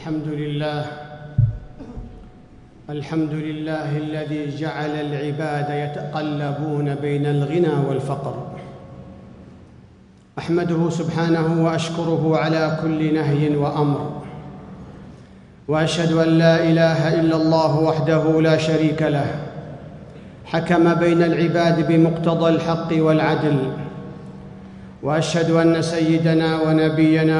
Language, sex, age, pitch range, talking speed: Arabic, male, 50-69, 150-165 Hz, 85 wpm